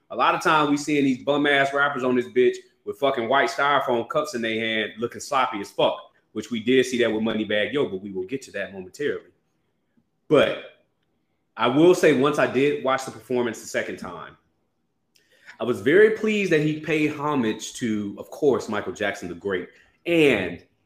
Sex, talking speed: male, 195 wpm